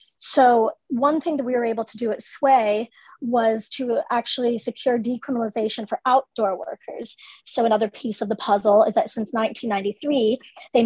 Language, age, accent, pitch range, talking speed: English, 30-49, American, 215-255 Hz, 165 wpm